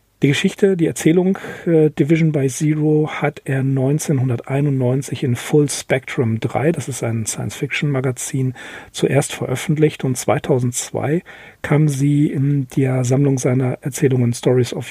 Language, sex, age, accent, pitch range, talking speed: German, male, 40-59, German, 125-155 Hz, 130 wpm